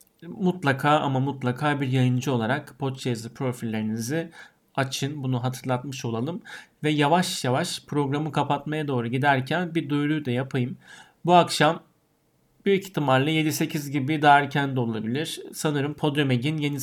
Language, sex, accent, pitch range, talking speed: Turkish, male, native, 135-170 Hz, 125 wpm